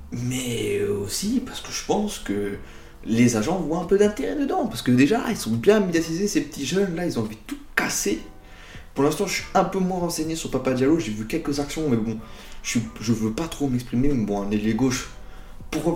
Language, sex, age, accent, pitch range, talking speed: French, male, 30-49, French, 110-135 Hz, 235 wpm